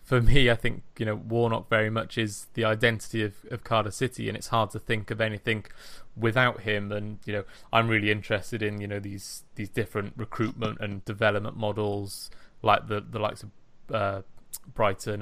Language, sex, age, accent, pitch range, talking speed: English, male, 20-39, British, 105-120 Hz, 190 wpm